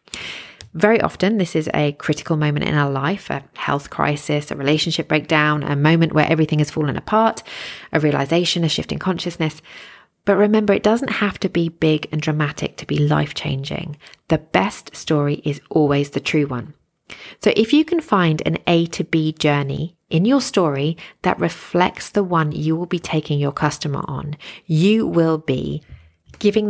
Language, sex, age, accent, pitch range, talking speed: English, female, 30-49, British, 150-195 Hz, 175 wpm